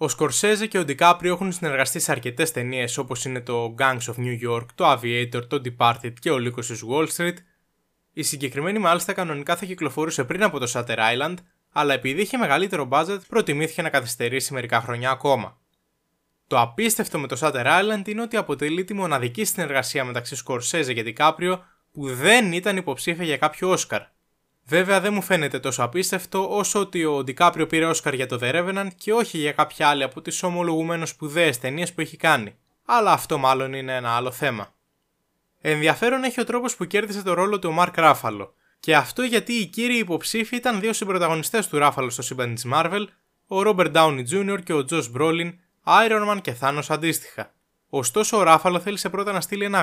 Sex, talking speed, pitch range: male, 185 wpm, 135-190 Hz